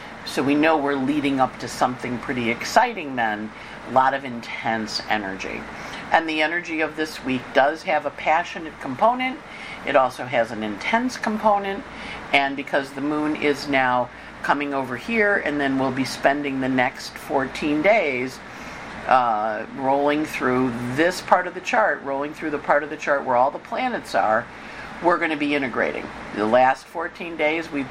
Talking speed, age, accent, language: 175 wpm, 50-69, American, English